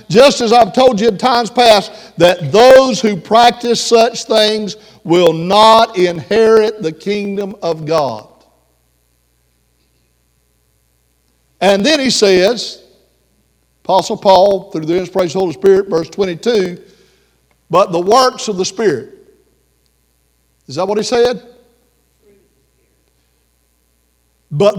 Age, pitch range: 60-79, 135-215 Hz